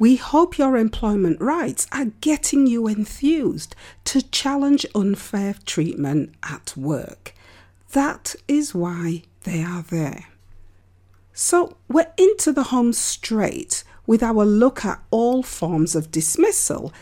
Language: English